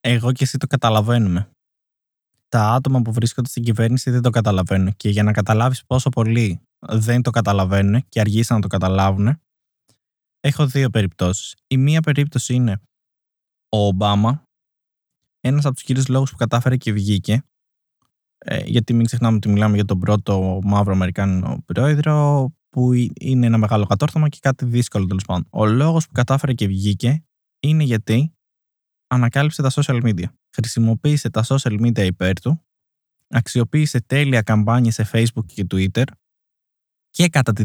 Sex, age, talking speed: male, 20-39, 155 wpm